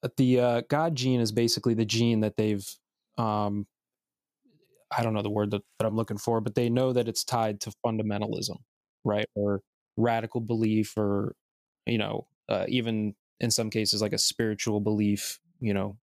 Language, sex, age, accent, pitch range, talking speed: English, male, 20-39, American, 105-120 Hz, 180 wpm